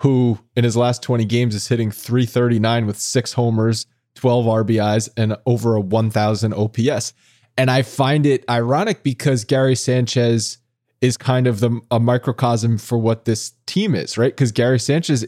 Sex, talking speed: male, 160 wpm